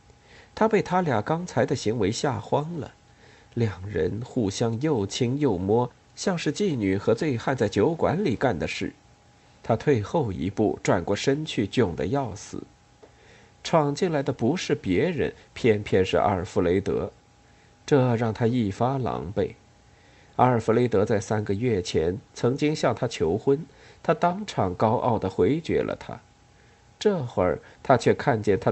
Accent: native